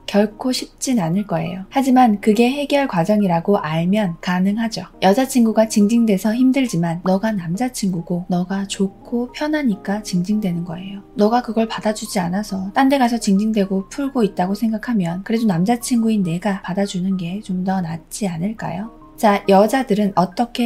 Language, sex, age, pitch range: Korean, female, 20-39, 190-235 Hz